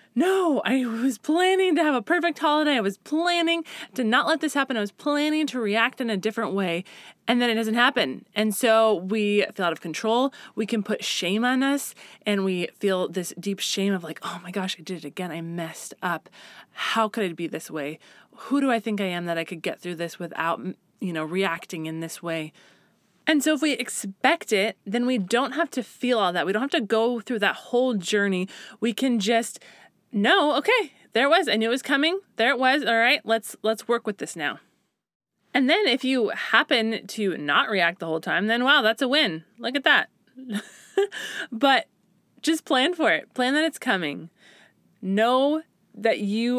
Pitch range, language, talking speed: 195-260 Hz, English, 215 wpm